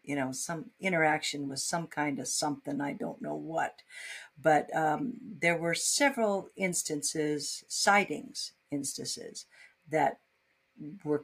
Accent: American